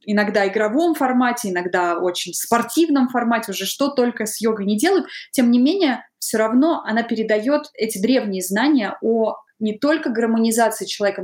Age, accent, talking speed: 20-39, native, 155 wpm